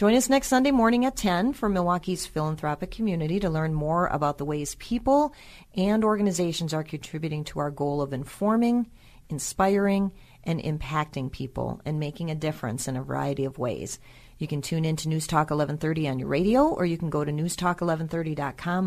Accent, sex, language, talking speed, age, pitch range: American, female, English, 180 wpm, 40-59, 145-200 Hz